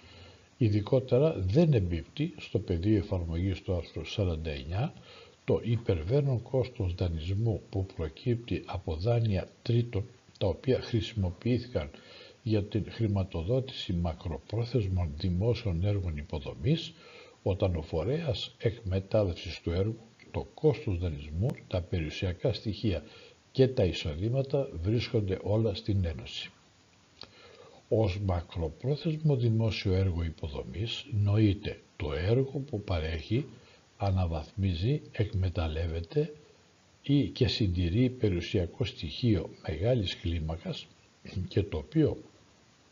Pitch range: 90-120 Hz